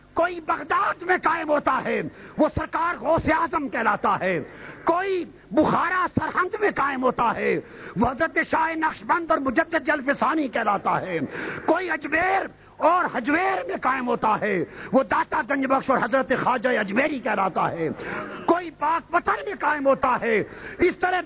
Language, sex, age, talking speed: Urdu, male, 50-69, 150 wpm